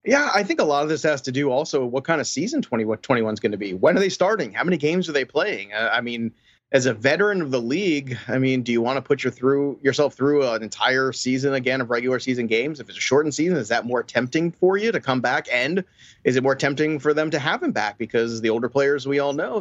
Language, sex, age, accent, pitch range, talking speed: English, male, 30-49, American, 125-155 Hz, 270 wpm